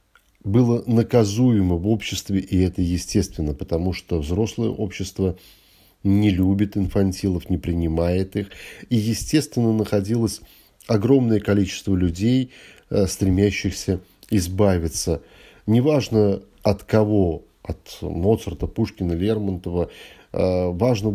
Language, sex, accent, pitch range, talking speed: Russian, male, native, 90-105 Hz, 95 wpm